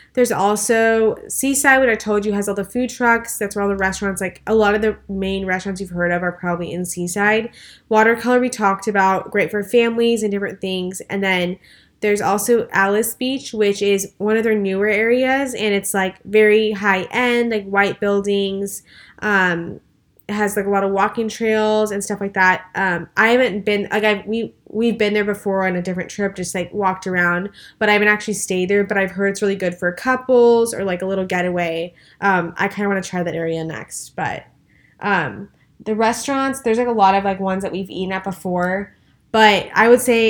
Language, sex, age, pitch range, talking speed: English, female, 10-29, 190-220 Hz, 210 wpm